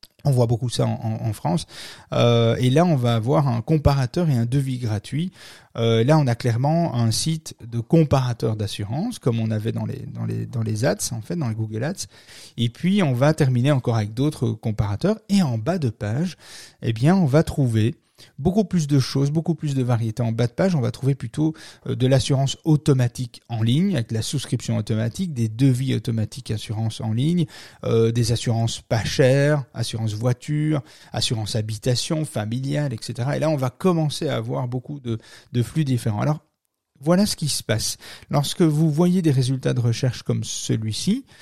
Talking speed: 195 wpm